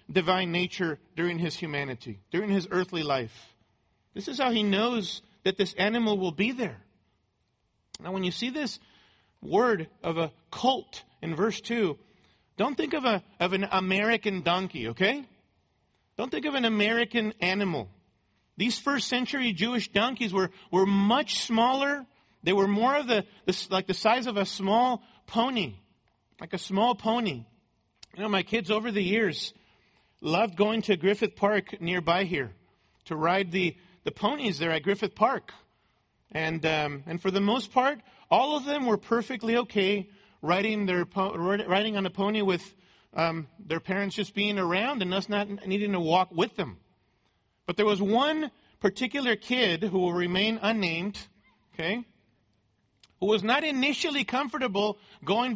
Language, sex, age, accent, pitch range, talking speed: English, male, 40-59, American, 170-225 Hz, 160 wpm